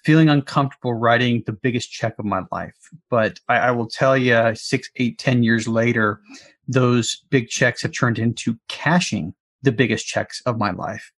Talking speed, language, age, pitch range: 175 wpm, English, 30-49, 115-135 Hz